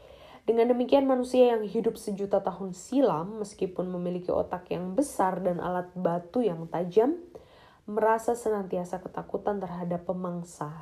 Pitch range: 175-220 Hz